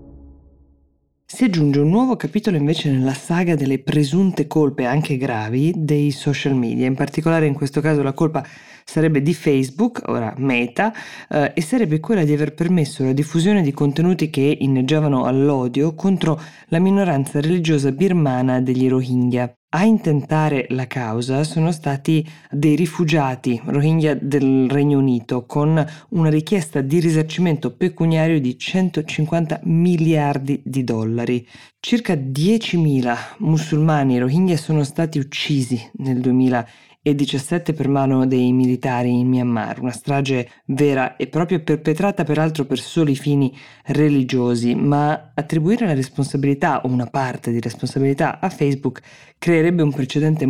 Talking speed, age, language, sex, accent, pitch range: 135 wpm, 20-39, Italian, female, native, 130-160 Hz